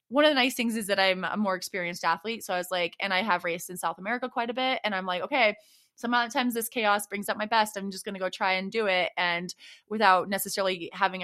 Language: English